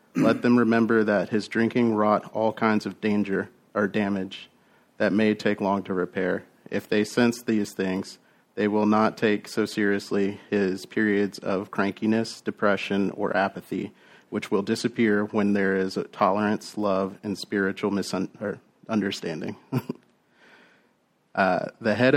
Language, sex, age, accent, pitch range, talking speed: English, male, 30-49, American, 100-110 Hz, 140 wpm